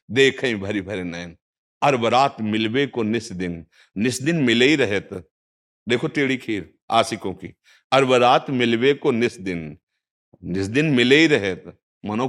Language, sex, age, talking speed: Hindi, male, 50-69, 105 wpm